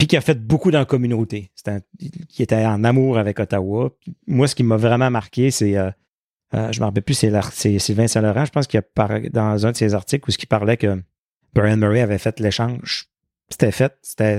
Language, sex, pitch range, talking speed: French, male, 105-120 Hz, 230 wpm